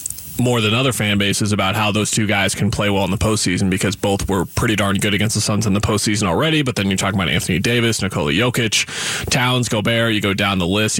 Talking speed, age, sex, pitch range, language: 245 wpm, 20-39, male, 100-115 Hz, English